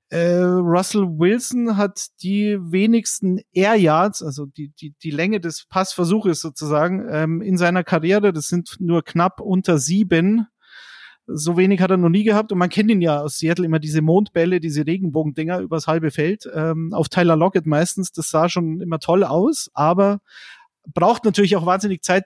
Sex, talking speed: male, 165 wpm